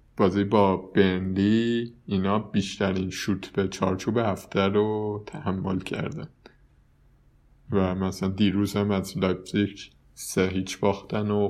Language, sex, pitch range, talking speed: Persian, male, 95-115 Hz, 115 wpm